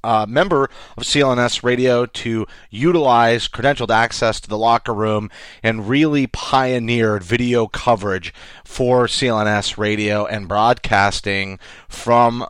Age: 30-49